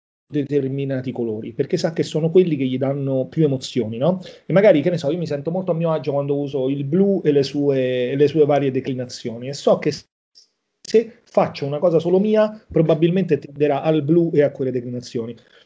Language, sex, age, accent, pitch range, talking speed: Italian, male, 40-59, native, 130-165 Hz, 205 wpm